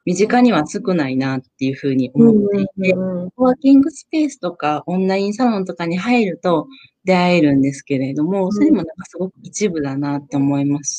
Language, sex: Japanese, female